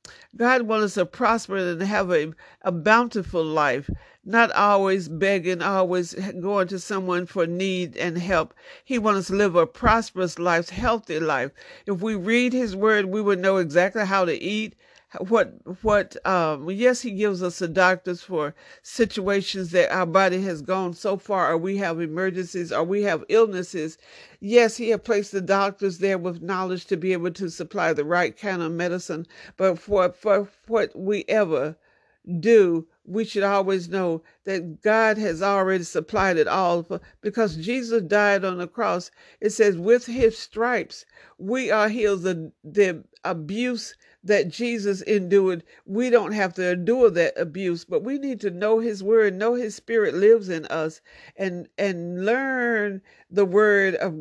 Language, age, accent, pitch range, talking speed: English, 50-69, American, 180-220 Hz, 170 wpm